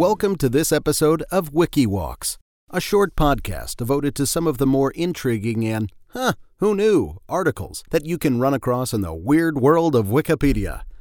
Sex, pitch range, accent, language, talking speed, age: male, 105-150 Hz, American, English, 175 wpm, 40-59